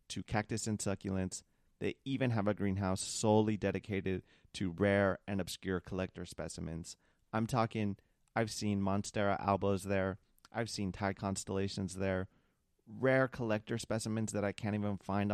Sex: male